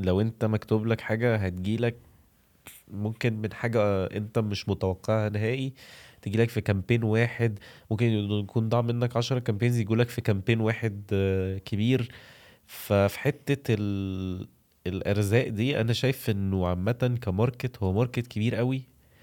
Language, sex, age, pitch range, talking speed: Arabic, male, 20-39, 100-125 Hz, 130 wpm